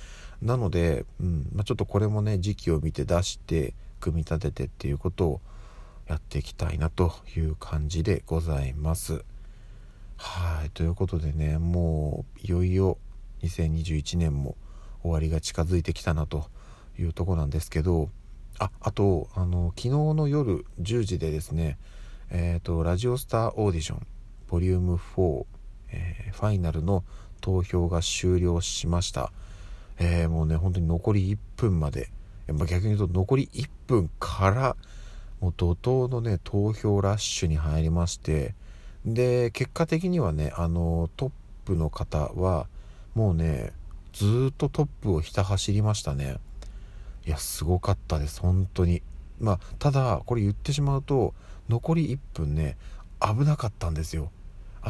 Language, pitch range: Japanese, 80-105 Hz